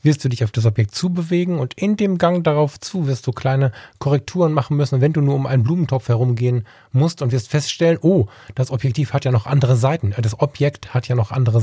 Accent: German